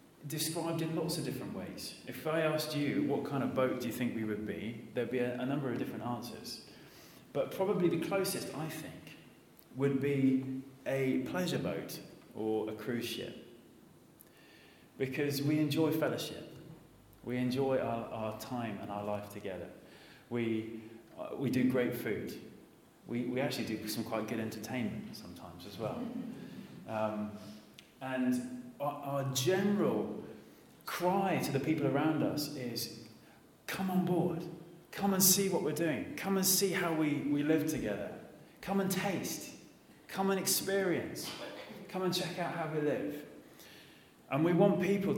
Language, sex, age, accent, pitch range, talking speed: English, male, 30-49, British, 120-165 Hz, 155 wpm